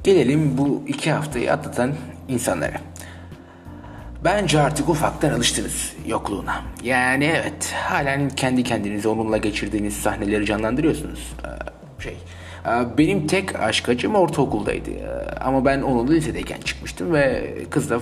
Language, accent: Turkish, native